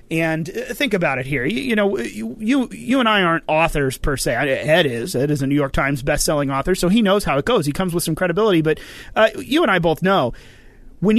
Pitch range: 150-200 Hz